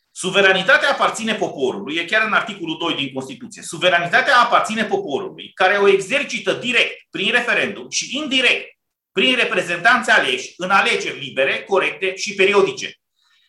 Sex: male